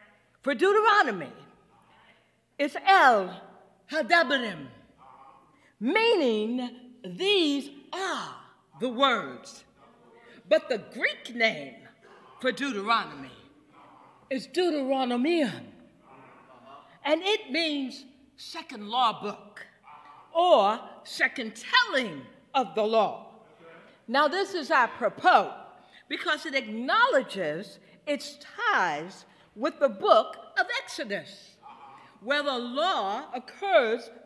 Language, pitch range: English, 245-330 Hz